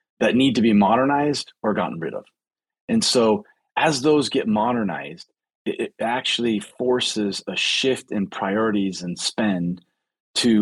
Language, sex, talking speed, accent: English, male, 140 wpm, American